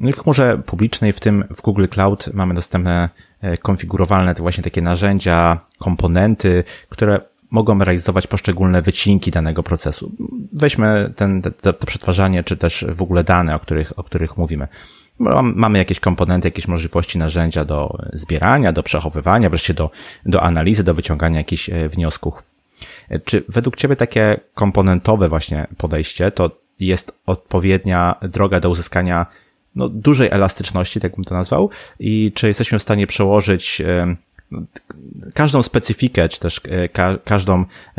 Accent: native